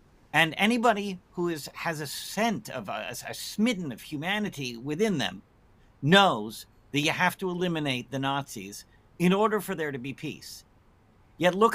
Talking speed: 160 wpm